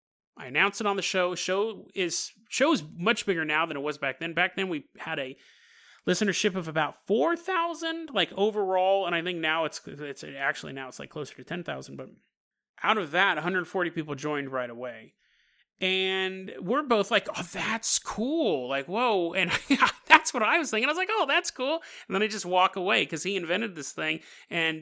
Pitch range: 165-255 Hz